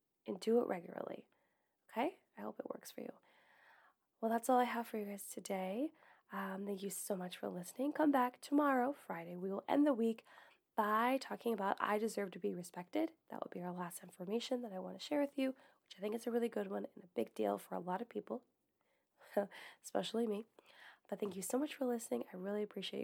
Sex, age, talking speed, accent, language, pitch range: female, 20-39, 220 wpm, American, English, 195-255 Hz